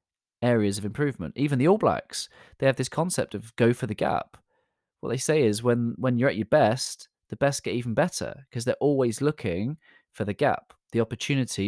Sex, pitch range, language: male, 95-135 Hz, English